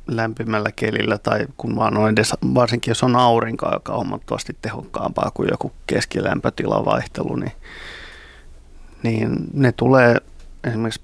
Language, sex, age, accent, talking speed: Finnish, male, 30-49, native, 125 wpm